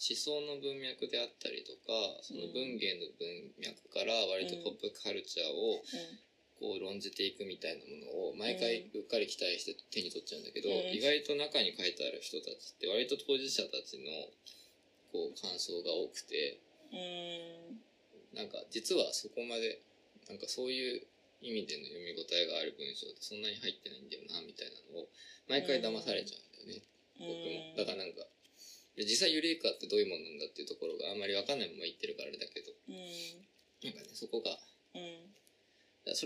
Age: 20-39